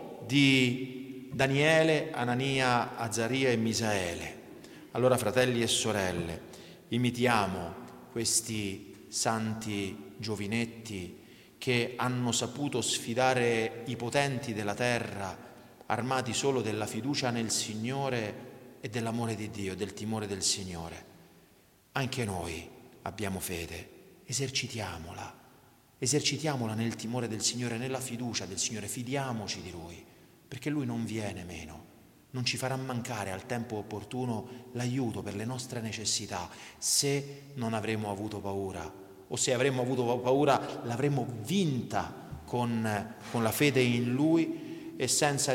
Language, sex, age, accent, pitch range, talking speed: Italian, male, 40-59, native, 110-130 Hz, 120 wpm